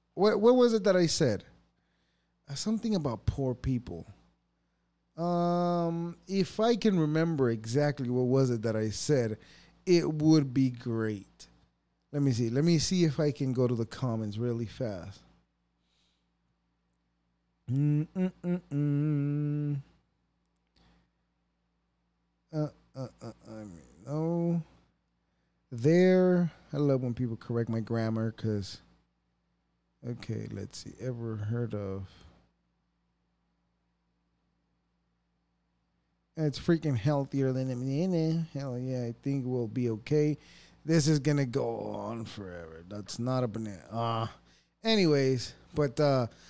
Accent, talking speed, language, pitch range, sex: American, 125 wpm, English, 110-160 Hz, male